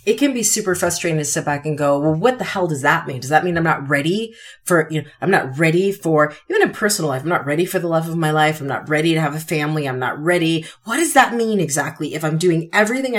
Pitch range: 140-185 Hz